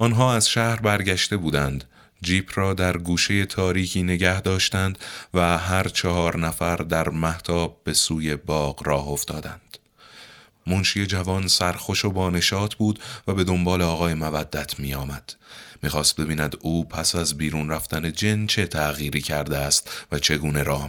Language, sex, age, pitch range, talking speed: Persian, male, 30-49, 75-95 Hz, 150 wpm